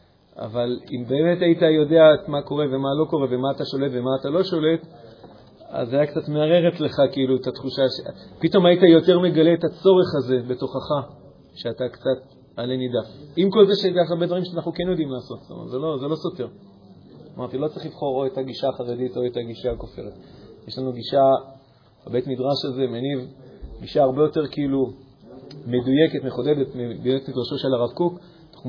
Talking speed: 180 wpm